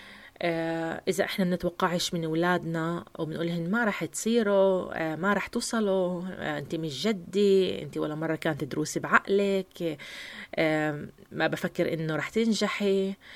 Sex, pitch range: female, 160-200 Hz